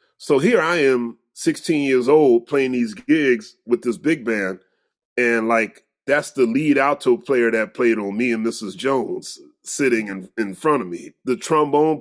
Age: 30-49